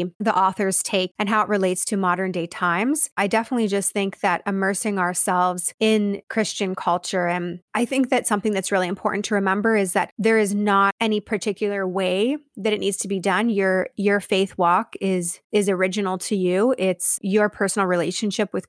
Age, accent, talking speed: 20-39, American, 190 wpm